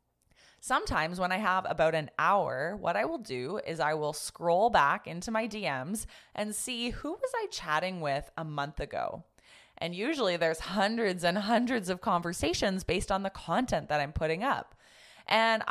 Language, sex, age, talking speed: English, female, 20-39, 175 wpm